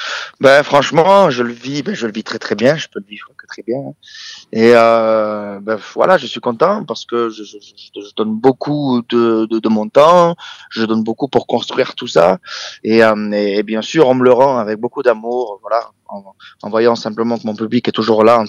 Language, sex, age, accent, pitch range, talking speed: English, male, 20-39, French, 110-135 Hz, 225 wpm